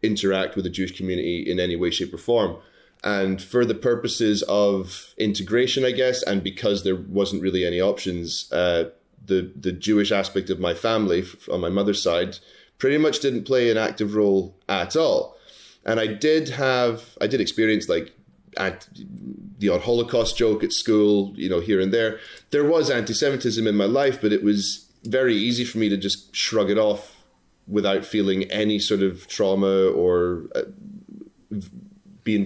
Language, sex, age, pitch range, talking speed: English, male, 30-49, 95-120 Hz, 175 wpm